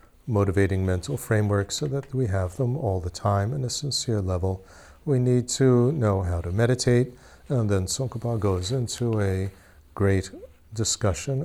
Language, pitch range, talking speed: English, 95-120 Hz, 155 wpm